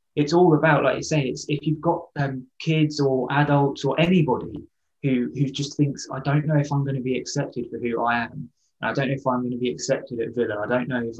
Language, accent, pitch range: English, British, 120-145 Hz